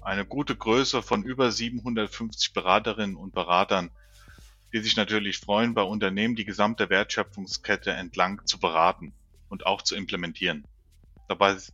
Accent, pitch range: German, 100-125 Hz